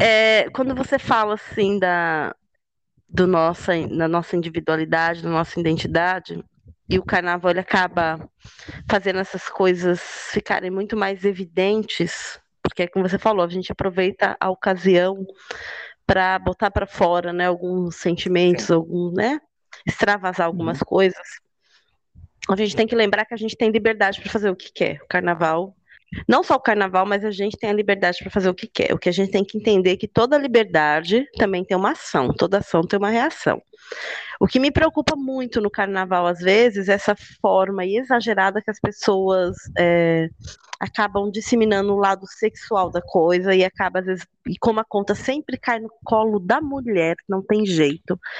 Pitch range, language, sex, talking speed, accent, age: 180-215 Hz, Portuguese, female, 170 wpm, Brazilian, 20-39